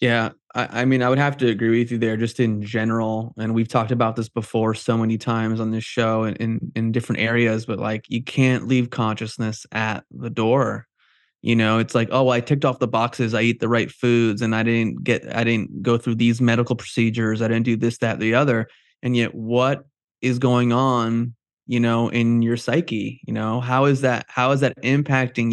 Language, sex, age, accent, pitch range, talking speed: English, male, 20-39, American, 115-125 Hz, 220 wpm